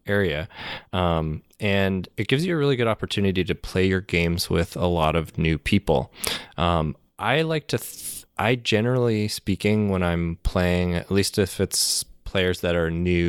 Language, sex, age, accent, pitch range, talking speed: English, male, 20-39, American, 85-95 Hz, 170 wpm